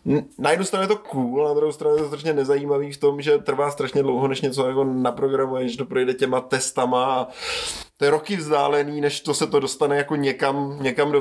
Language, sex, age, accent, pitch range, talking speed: Czech, male, 20-39, native, 120-145 Hz, 215 wpm